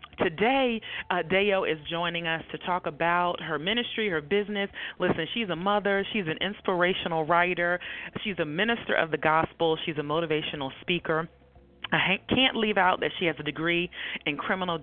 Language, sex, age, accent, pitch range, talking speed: English, female, 30-49, American, 165-215 Hz, 175 wpm